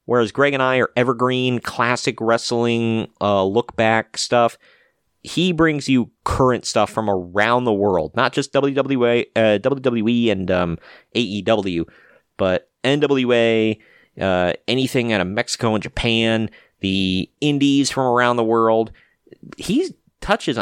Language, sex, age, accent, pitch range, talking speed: English, male, 30-49, American, 100-130 Hz, 130 wpm